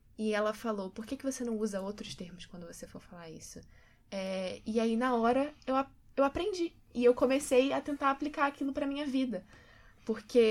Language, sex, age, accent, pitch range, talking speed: Portuguese, female, 10-29, Brazilian, 190-230 Hz, 190 wpm